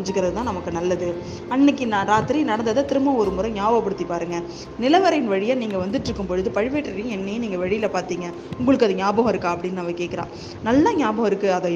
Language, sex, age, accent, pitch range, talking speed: Tamil, female, 20-39, native, 185-250 Hz, 165 wpm